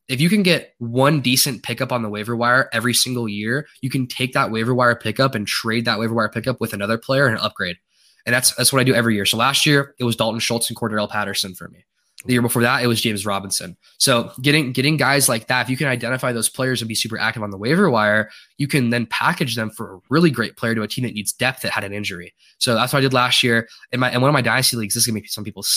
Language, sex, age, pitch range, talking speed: English, male, 10-29, 110-135 Hz, 285 wpm